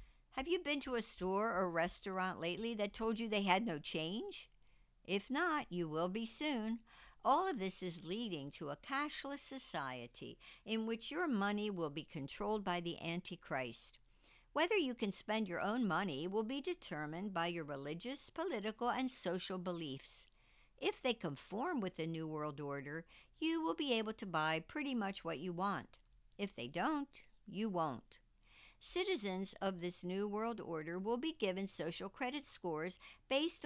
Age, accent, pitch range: 60-79, American, 170-250 Hz